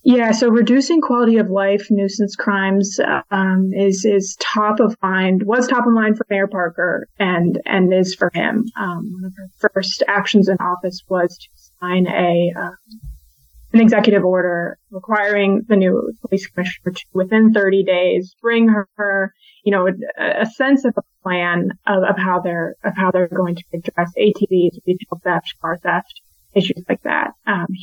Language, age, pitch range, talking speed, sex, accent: English, 20-39, 185-220 Hz, 175 wpm, female, American